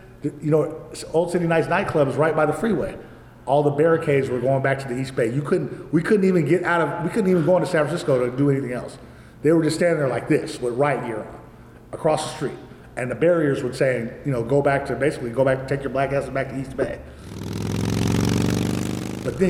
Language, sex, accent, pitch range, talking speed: English, male, American, 130-165 Hz, 235 wpm